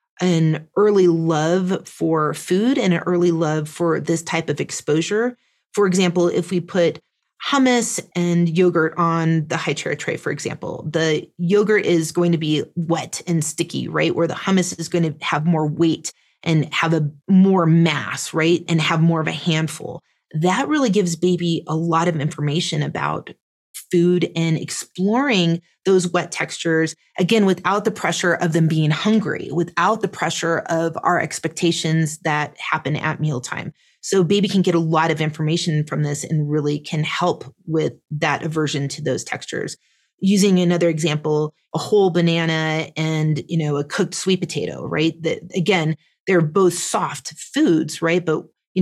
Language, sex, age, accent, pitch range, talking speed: English, female, 30-49, American, 155-180 Hz, 165 wpm